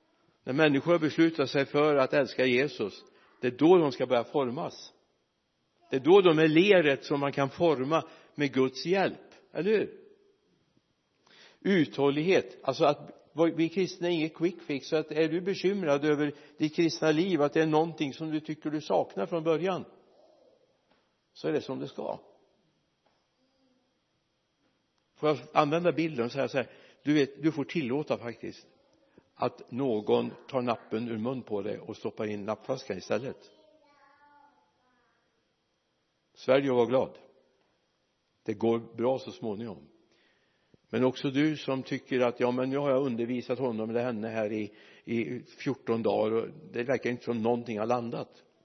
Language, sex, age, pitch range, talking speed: Swedish, male, 60-79, 125-165 Hz, 160 wpm